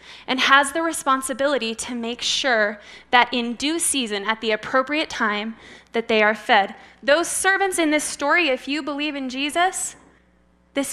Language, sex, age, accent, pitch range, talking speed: English, female, 10-29, American, 230-310 Hz, 165 wpm